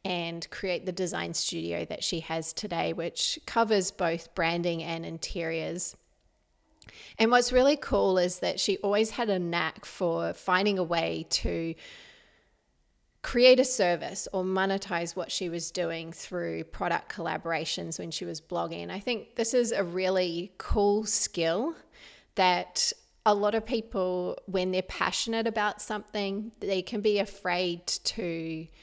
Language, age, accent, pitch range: English, 30-49, Australian, 170-210 Hz